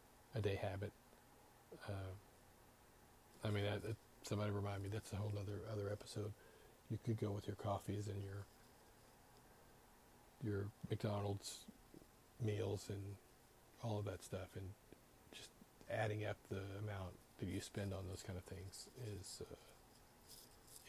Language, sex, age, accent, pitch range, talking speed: English, male, 40-59, American, 100-115 Hz, 140 wpm